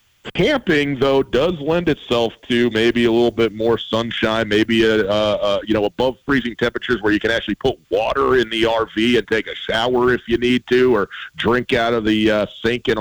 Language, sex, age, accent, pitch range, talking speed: English, male, 40-59, American, 105-120 Hz, 210 wpm